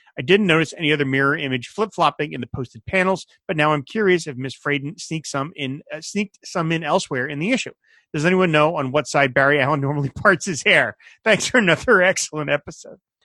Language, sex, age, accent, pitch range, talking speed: English, male, 30-49, American, 130-170 Hz, 205 wpm